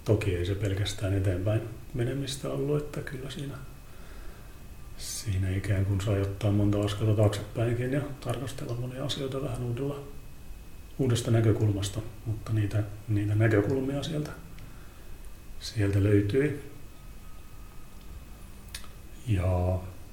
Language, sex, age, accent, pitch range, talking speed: Finnish, male, 40-59, native, 95-120 Hz, 100 wpm